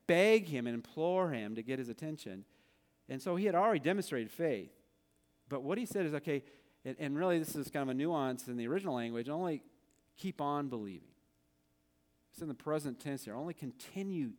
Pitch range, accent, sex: 110-170 Hz, American, male